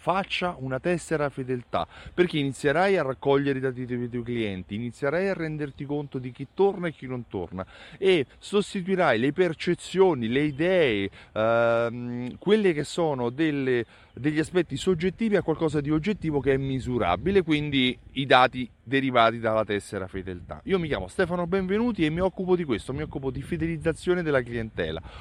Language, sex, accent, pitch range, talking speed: Italian, male, native, 130-180 Hz, 160 wpm